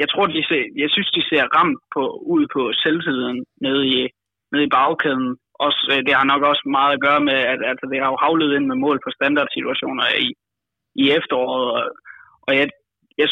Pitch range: 135-175 Hz